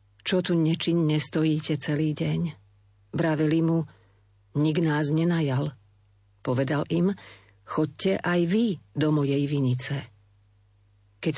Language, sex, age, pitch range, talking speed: Slovak, female, 40-59, 115-180 Hz, 105 wpm